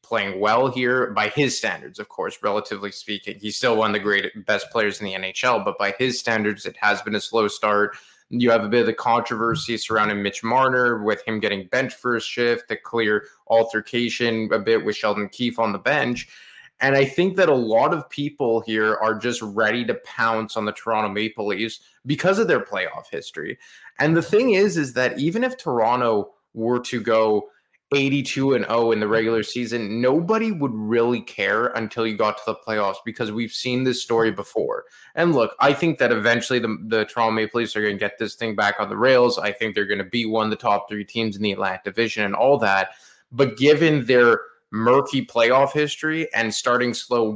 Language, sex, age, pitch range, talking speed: English, male, 20-39, 105-125 Hz, 210 wpm